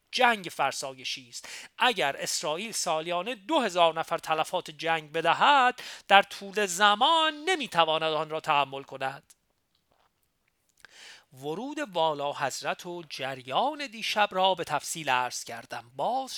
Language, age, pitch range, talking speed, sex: Persian, 40-59, 150-225 Hz, 115 wpm, male